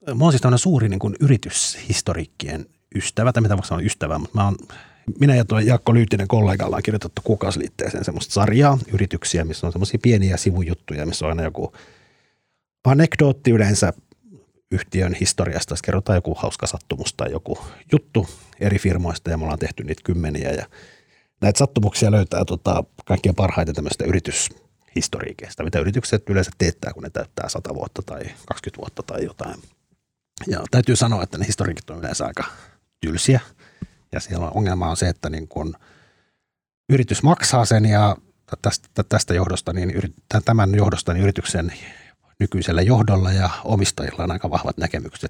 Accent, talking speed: native, 160 wpm